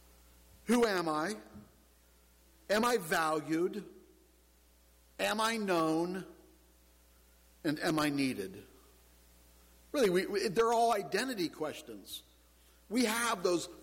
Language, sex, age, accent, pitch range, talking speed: English, male, 60-79, American, 125-190 Hz, 90 wpm